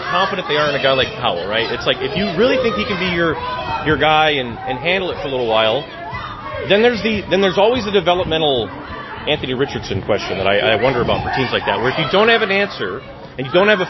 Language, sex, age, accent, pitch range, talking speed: English, male, 30-49, American, 125-170 Hz, 265 wpm